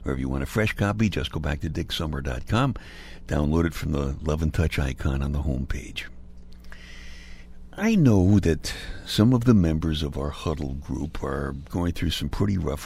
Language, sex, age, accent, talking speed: English, male, 60-79, American, 190 wpm